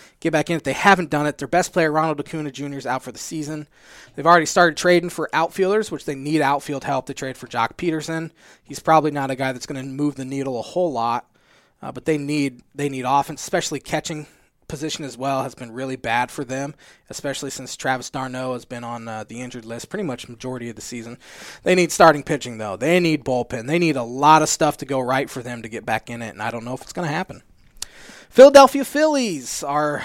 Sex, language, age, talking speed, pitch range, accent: male, English, 20-39, 240 wpm, 130-170 Hz, American